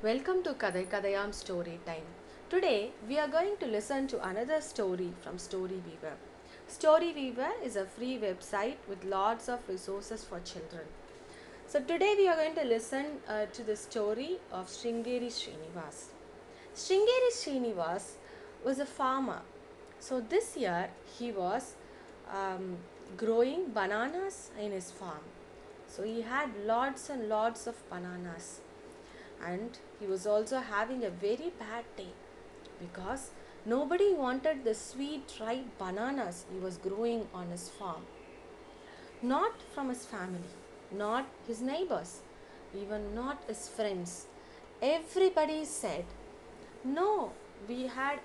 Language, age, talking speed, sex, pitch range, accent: English, 30-49, 130 wpm, female, 210-320 Hz, Indian